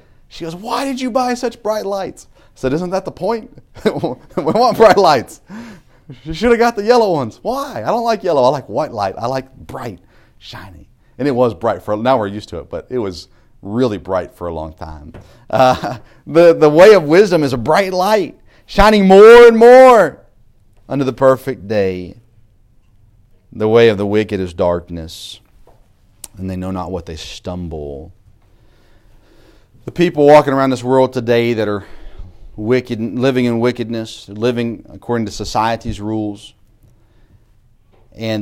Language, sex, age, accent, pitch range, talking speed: English, male, 40-59, American, 105-135 Hz, 170 wpm